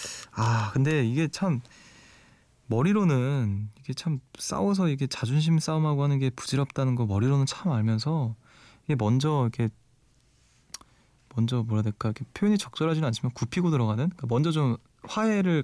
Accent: native